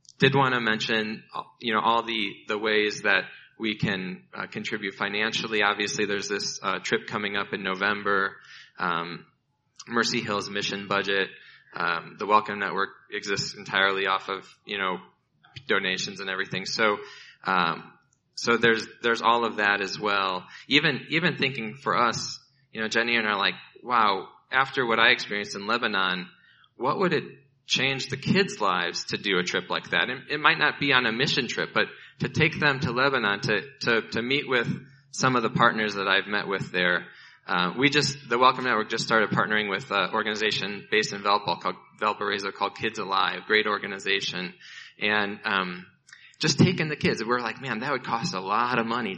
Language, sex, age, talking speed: English, male, 20-39, 185 wpm